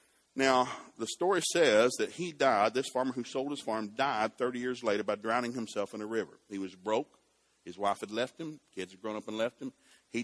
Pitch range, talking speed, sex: 105-135 Hz, 230 wpm, male